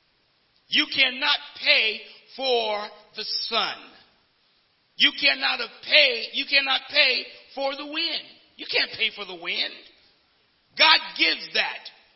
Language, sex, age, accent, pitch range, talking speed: English, male, 50-69, American, 215-300 Hz, 120 wpm